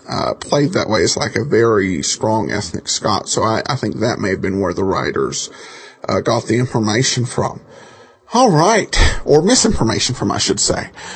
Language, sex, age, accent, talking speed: English, male, 50-69, American, 190 wpm